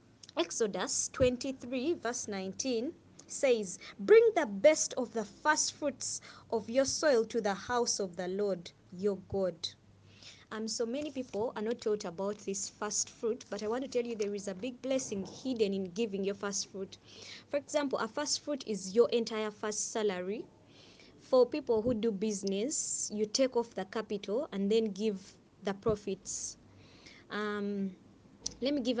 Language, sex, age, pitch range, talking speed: English, female, 20-39, 200-245 Hz, 170 wpm